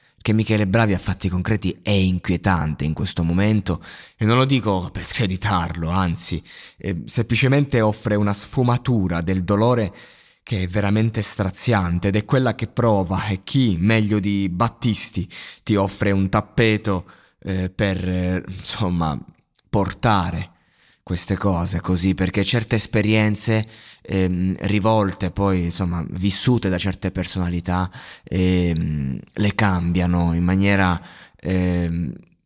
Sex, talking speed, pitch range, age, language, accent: male, 125 wpm, 90-110 Hz, 20-39, Italian, native